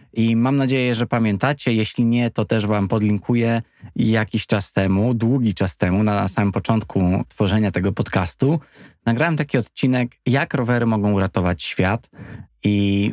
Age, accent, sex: 20-39, native, male